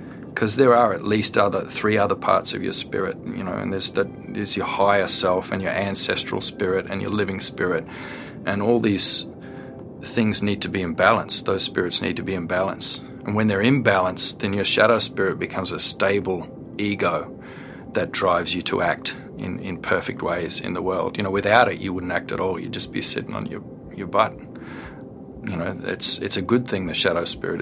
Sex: male